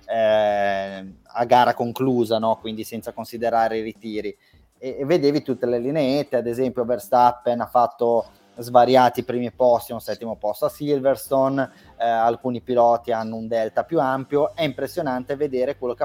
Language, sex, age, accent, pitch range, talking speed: Italian, male, 20-39, native, 115-135 Hz, 160 wpm